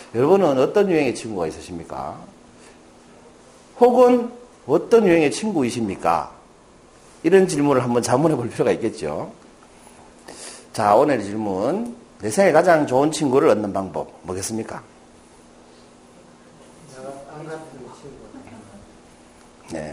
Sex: male